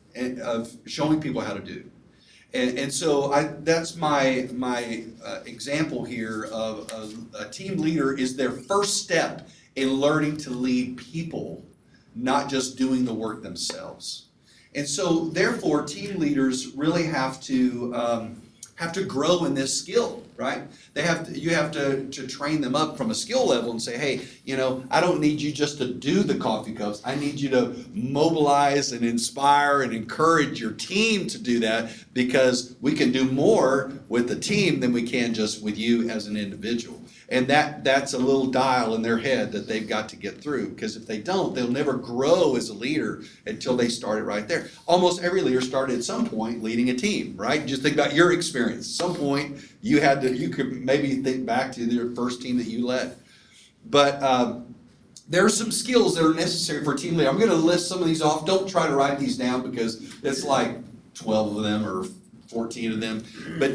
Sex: male